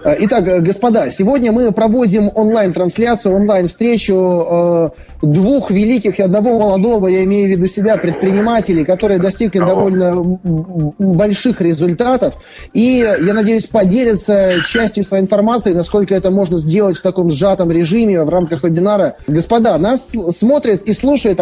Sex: male